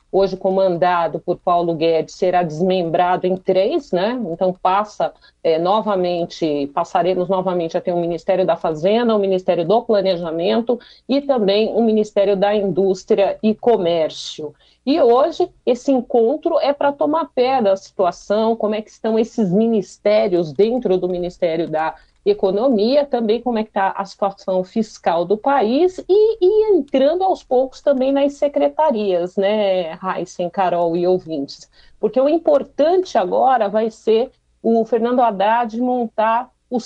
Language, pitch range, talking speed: Portuguese, 175-225 Hz, 145 wpm